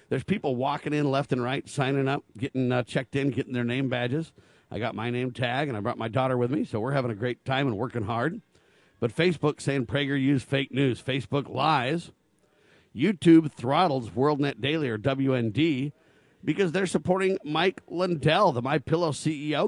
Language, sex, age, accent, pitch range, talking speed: English, male, 50-69, American, 115-150 Hz, 190 wpm